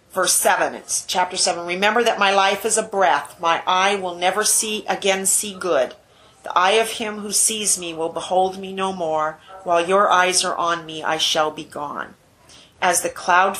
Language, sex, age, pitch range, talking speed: English, female, 40-59, 165-195 Hz, 200 wpm